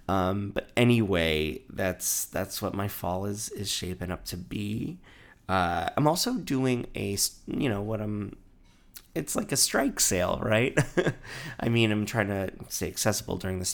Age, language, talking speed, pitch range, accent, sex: 30-49, English, 165 wpm, 90-110 Hz, American, male